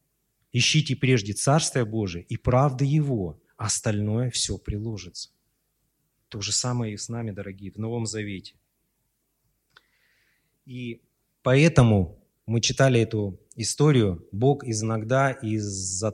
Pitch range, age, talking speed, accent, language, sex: 105-140 Hz, 30-49, 110 wpm, native, Russian, male